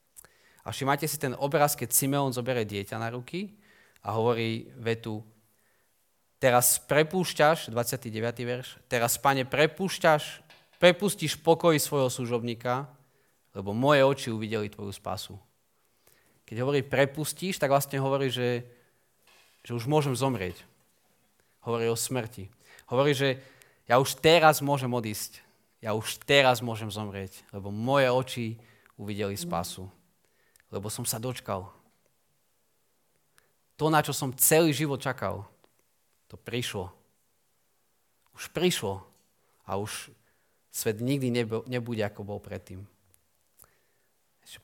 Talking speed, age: 115 wpm, 30-49